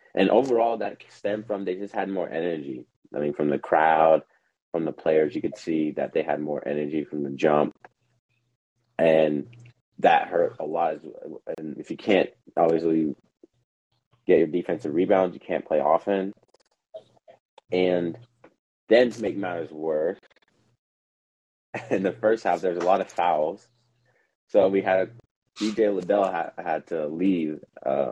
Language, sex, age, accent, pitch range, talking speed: English, male, 30-49, American, 85-120 Hz, 160 wpm